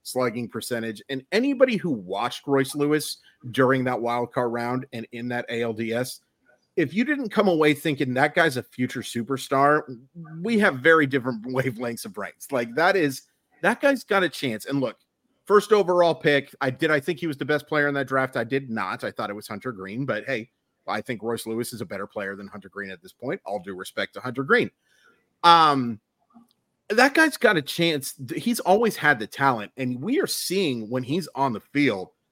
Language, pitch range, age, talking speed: English, 120-170 Hz, 30-49, 205 wpm